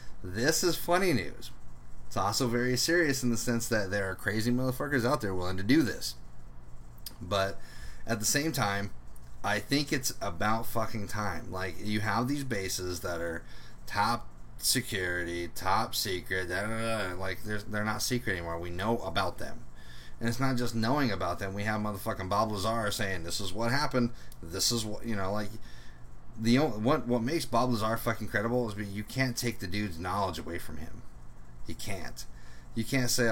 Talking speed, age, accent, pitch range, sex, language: 190 wpm, 30-49, American, 85-120 Hz, male, English